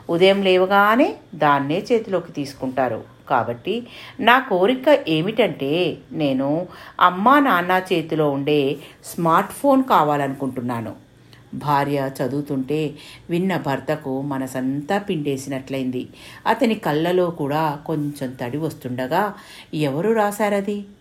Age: 50-69